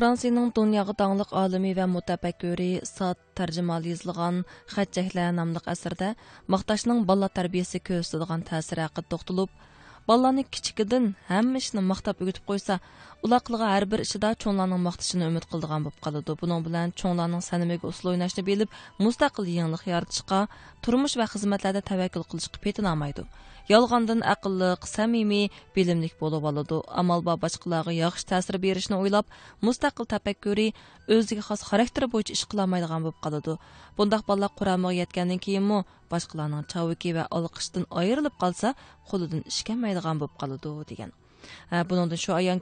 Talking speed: 95 wpm